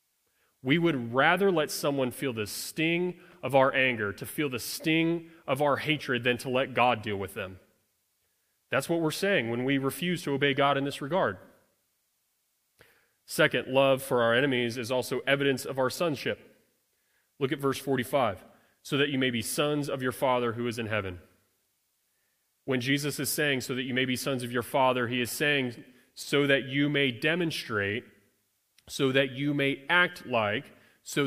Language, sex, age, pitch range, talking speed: English, male, 30-49, 110-140 Hz, 180 wpm